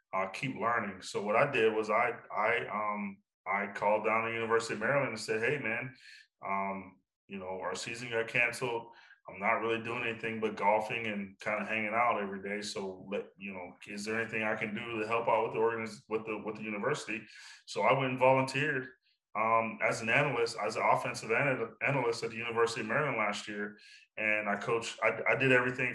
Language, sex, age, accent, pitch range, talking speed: English, male, 20-39, American, 105-120 Hz, 215 wpm